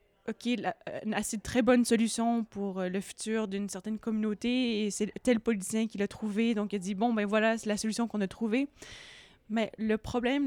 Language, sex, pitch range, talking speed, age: French, female, 220-270 Hz, 235 wpm, 20-39